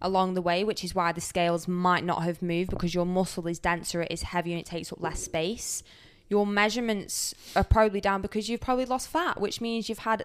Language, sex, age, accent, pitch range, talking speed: English, female, 20-39, British, 180-210 Hz, 235 wpm